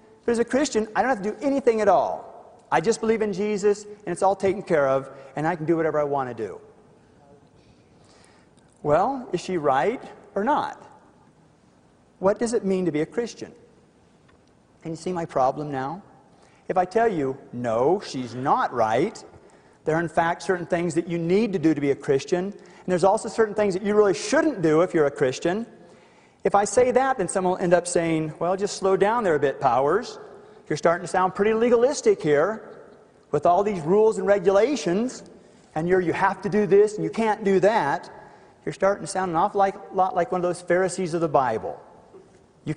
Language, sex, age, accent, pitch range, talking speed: English, male, 40-59, American, 170-220 Hz, 210 wpm